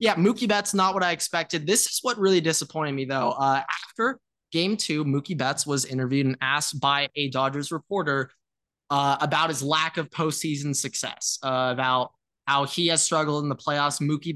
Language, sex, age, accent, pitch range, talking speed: English, male, 20-39, American, 135-180 Hz, 190 wpm